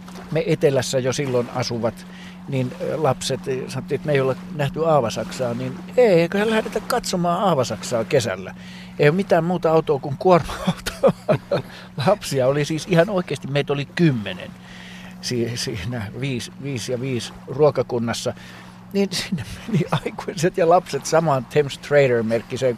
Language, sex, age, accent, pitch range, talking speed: Finnish, male, 60-79, native, 125-175 Hz, 135 wpm